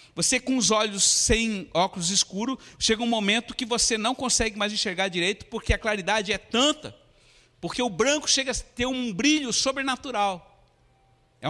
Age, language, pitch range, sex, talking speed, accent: 60-79, Portuguese, 155-250 Hz, male, 165 wpm, Brazilian